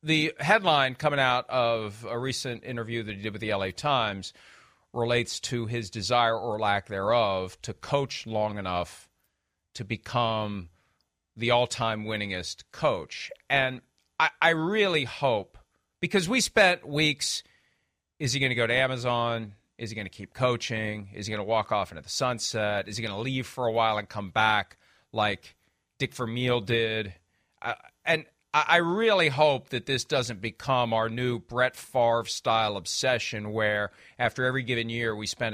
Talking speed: 165 wpm